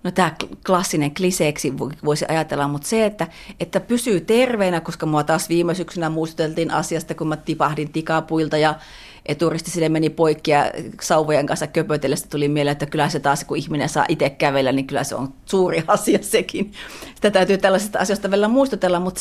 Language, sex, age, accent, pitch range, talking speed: Finnish, female, 30-49, native, 150-215 Hz, 175 wpm